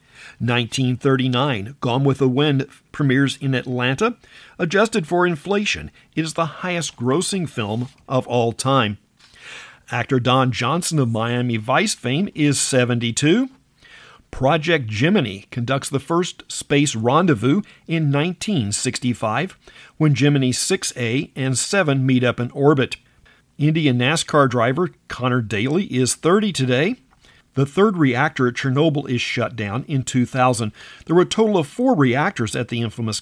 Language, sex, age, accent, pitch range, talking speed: English, male, 50-69, American, 120-160 Hz, 135 wpm